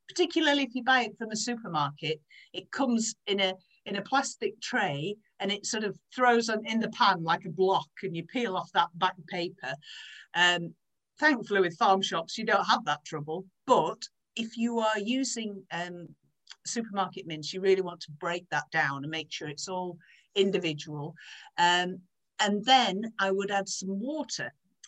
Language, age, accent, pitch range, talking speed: English, 50-69, British, 175-235 Hz, 180 wpm